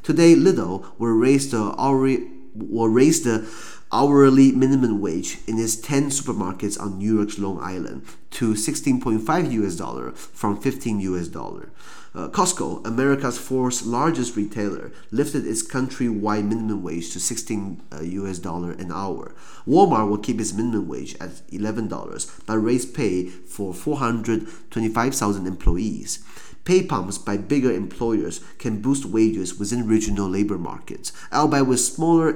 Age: 30-49